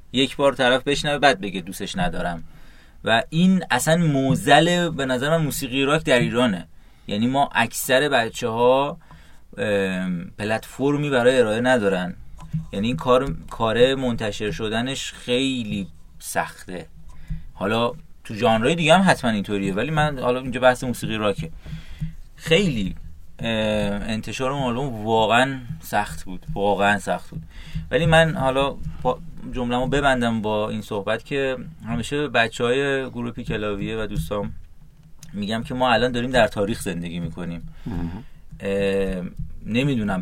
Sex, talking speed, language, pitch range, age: male, 125 wpm, Persian, 100-135 Hz, 30-49